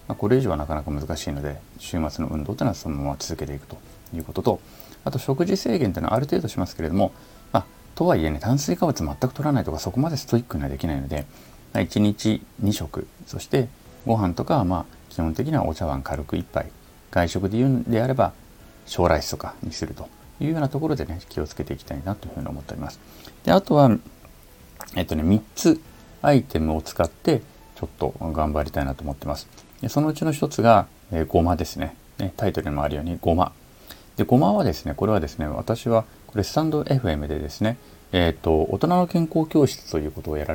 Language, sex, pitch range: Japanese, male, 75-110 Hz